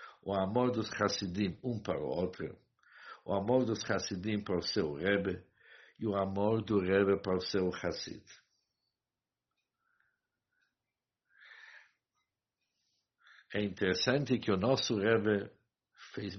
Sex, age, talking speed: male, 60-79, 115 wpm